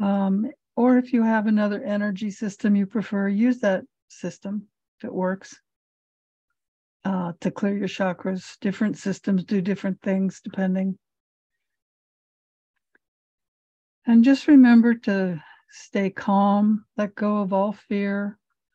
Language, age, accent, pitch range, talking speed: English, 60-79, American, 195-230 Hz, 120 wpm